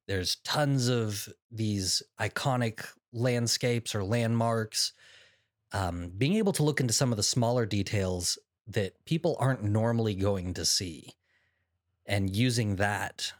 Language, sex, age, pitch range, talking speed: English, male, 30-49, 95-120 Hz, 130 wpm